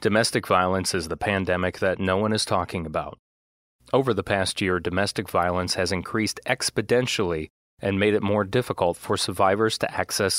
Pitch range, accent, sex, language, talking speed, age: 90-120 Hz, American, male, English, 170 wpm, 30-49